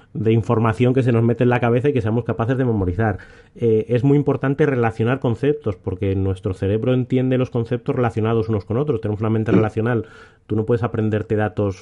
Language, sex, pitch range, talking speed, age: Spanish, male, 105-130 Hz, 205 wpm, 30-49